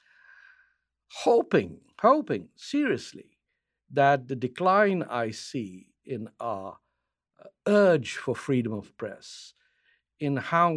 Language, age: English, 60-79